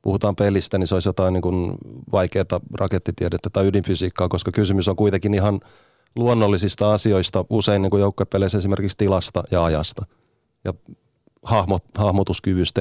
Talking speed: 115 wpm